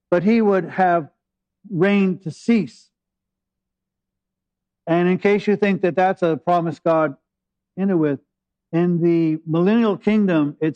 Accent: American